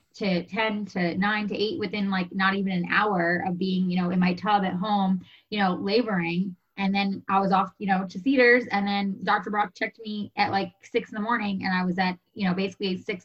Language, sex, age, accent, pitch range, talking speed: English, female, 20-39, American, 175-205 Hz, 240 wpm